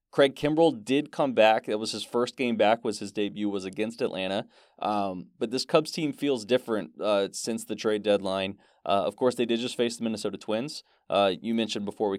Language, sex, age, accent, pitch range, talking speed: English, male, 20-39, American, 105-130 Hz, 215 wpm